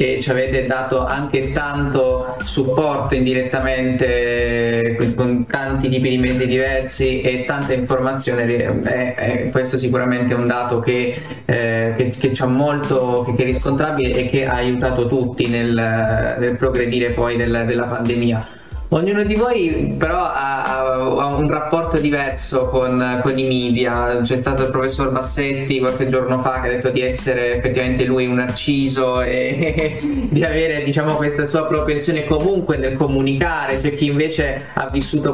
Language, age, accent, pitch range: Italian, 20-39, native, 125-140 Hz